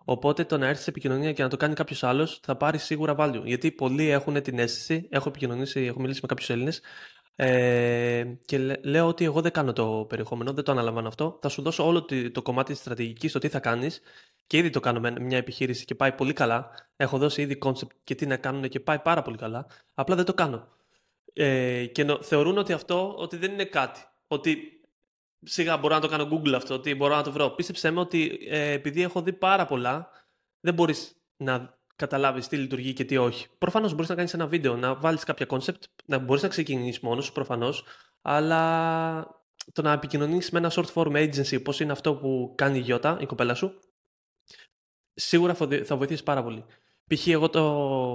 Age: 20-39